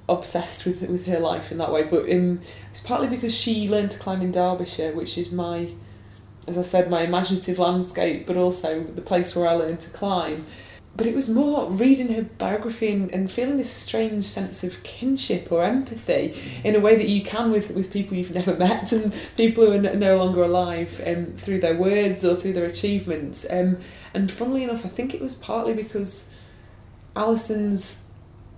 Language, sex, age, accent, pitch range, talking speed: English, female, 20-39, British, 170-200 Hz, 195 wpm